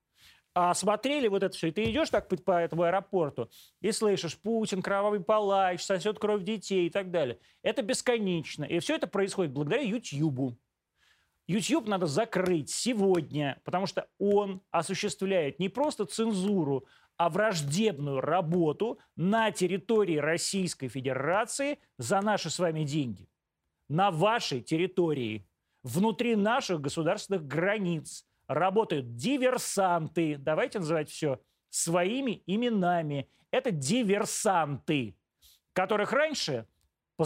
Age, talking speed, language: 30-49, 120 wpm, Russian